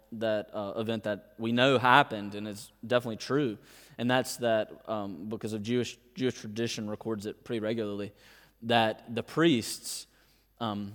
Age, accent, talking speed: 20-39, American, 155 wpm